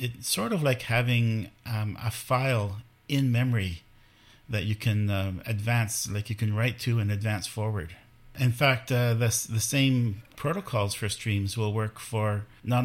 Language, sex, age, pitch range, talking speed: English, male, 50-69, 105-125 Hz, 165 wpm